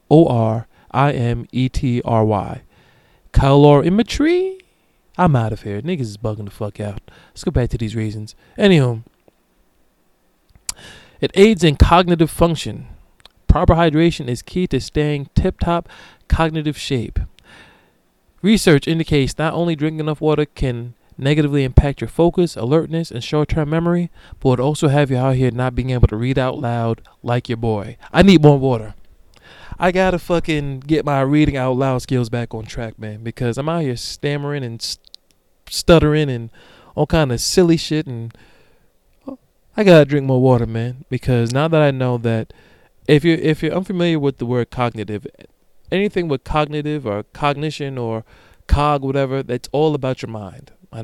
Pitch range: 120-160 Hz